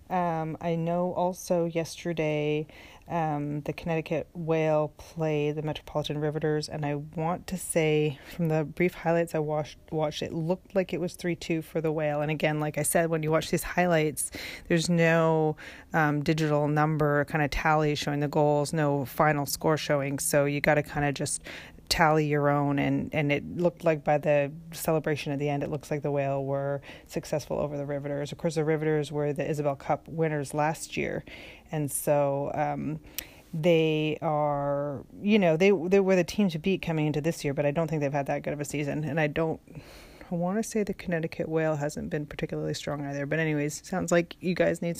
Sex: female